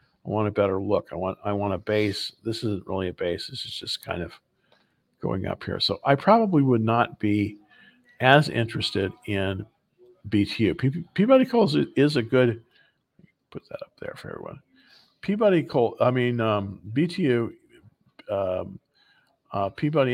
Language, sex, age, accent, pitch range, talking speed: English, male, 50-69, American, 105-145 Hz, 165 wpm